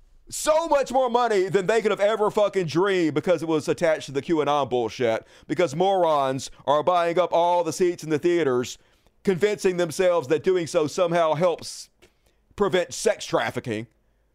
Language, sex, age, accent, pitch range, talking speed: English, male, 40-59, American, 170-240 Hz, 165 wpm